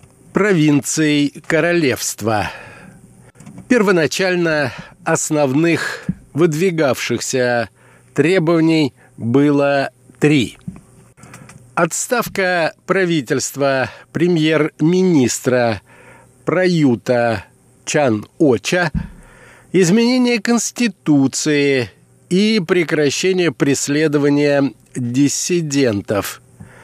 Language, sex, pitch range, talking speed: Russian, male, 135-180 Hz, 45 wpm